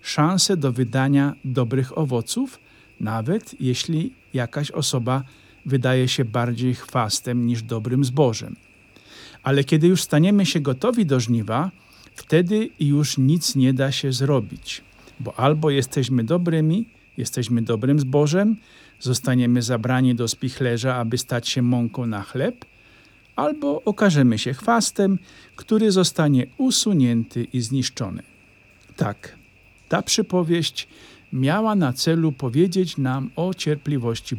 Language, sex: Polish, male